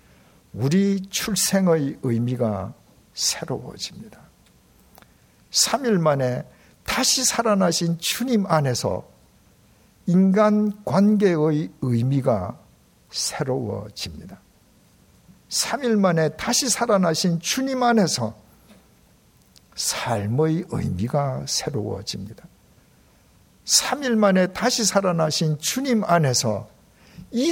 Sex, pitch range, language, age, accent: male, 125-210 Hz, Korean, 60-79, native